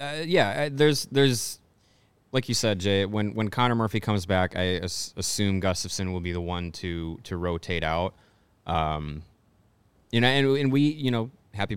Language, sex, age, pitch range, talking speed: English, male, 20-39, 90-110 Hz, 180 wpm